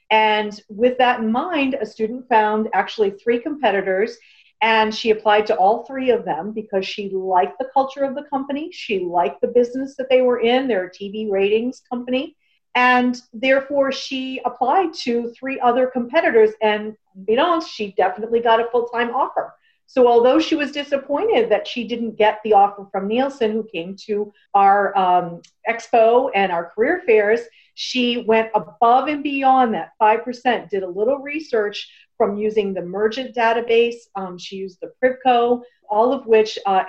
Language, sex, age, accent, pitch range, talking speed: English, female, 40-59, American, 210-255 Hz, 170 wpm